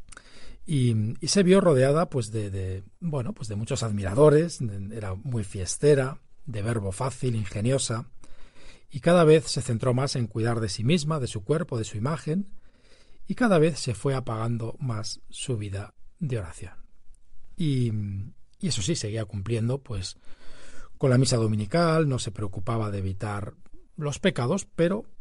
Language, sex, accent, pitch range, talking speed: Spanish, male, Spanish, 105-145 Hz, 150 wpm